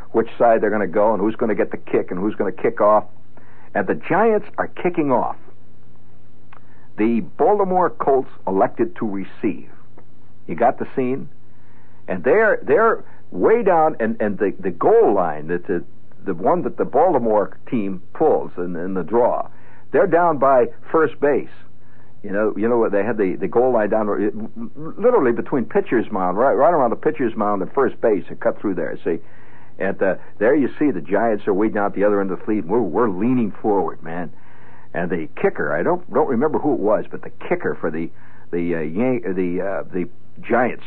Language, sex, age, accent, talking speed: English, male, 60-79, American, 200 wpm